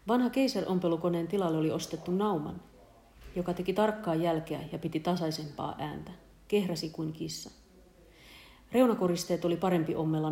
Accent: native